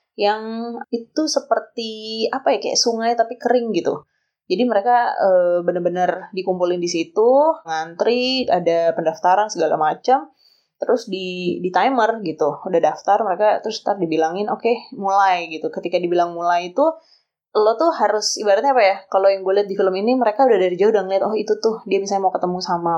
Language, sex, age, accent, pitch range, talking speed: Indonesian, female, 20-39, native, 180-225 Hz, 180 wpm